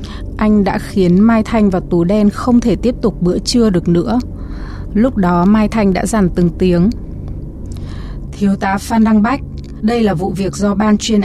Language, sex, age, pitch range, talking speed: Vietnamese, female, 20-39, 180-230 Hz, 190 wpm